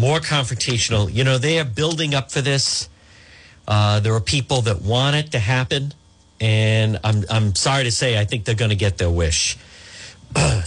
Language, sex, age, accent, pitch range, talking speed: English, male, 50-69, American, 100-170 Hz, 185 wpm